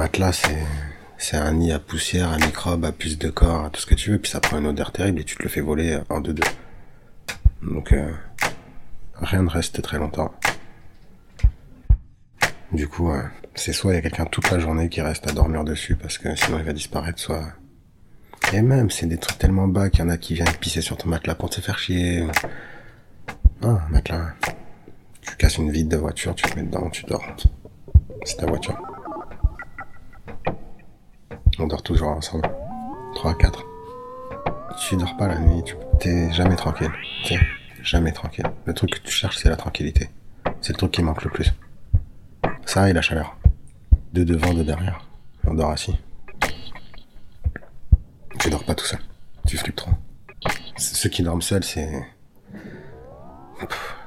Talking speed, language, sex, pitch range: 180 wpm, French, male, 75-90 Hz